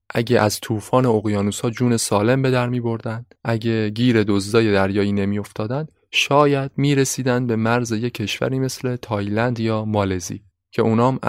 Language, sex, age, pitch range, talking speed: Persian, male, 20-39, 100-120 Hz, 140 wpm